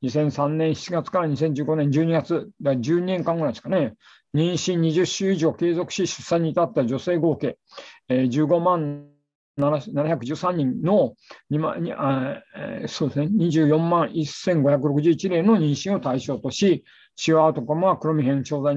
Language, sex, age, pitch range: Japanese, male, 50-69, 150-195 Hz